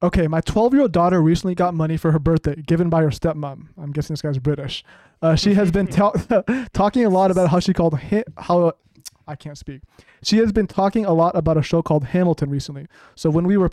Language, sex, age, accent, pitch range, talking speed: English, male, 20-39, American, 155-175 Hz, 220 wpm